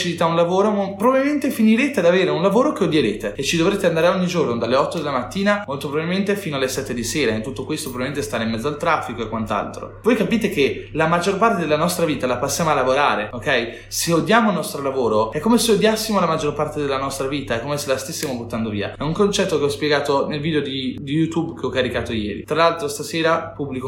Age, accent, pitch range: 20-39, native, 120-160 Hz